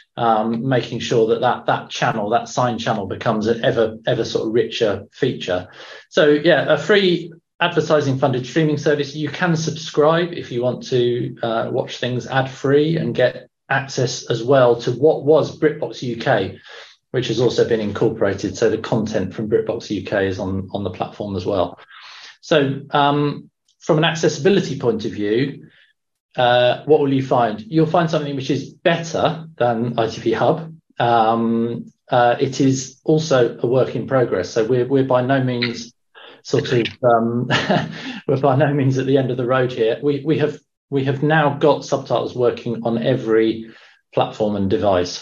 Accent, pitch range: British, 115-150 Hz